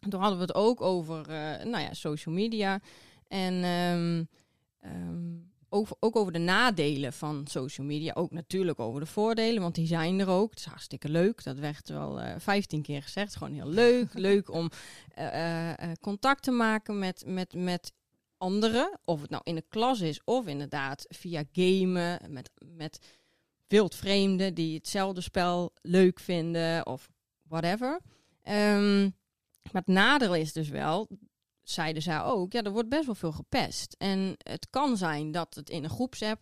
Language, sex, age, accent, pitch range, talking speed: Dutch, female, 30-49, Dutch, 155-200 Hz, 170 wpm